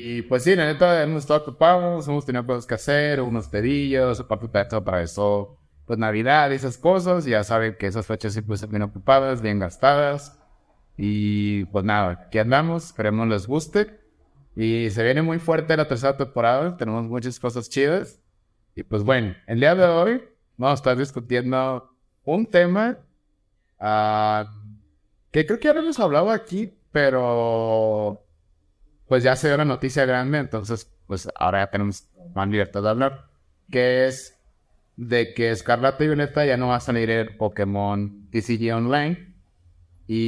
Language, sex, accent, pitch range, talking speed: Spanish, male, Mexican, 105-140 Hz, 165 wpm